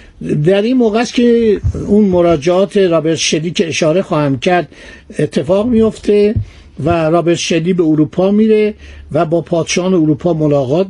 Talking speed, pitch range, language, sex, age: 145 wpm, 165-210 Hz, Persian, male, 60-79